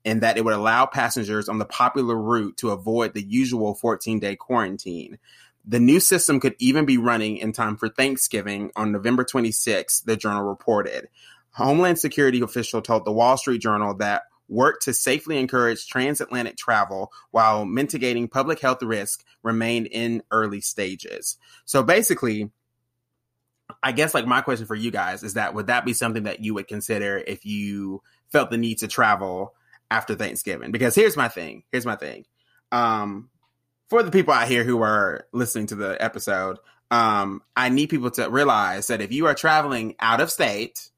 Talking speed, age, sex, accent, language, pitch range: 175 wpm, 20-39, male, American, English, 110-130 Hz